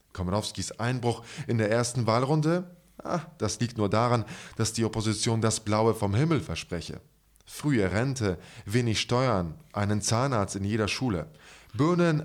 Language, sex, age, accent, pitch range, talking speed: English, male, 20-39, German, 100-140 Hz, 140 wpm